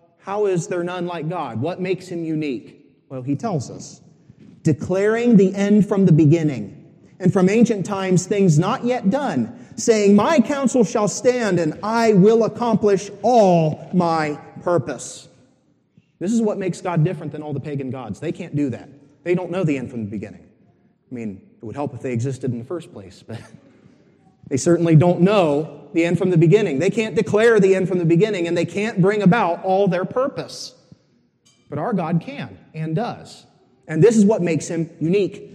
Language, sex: English, male